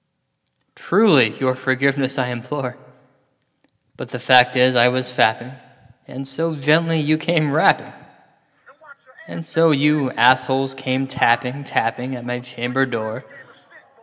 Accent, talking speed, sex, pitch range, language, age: American, 125 wpm, male, 130-145 Hz, English, 20-39